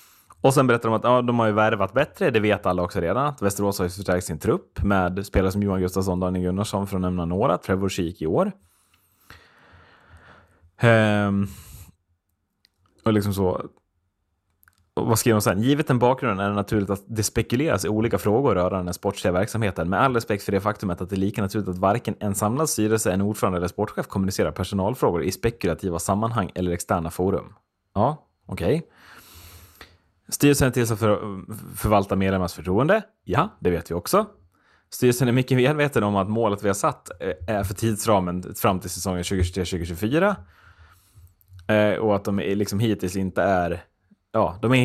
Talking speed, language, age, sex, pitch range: 175 wpm, Swedish, 20-39, male, 90-110 Hz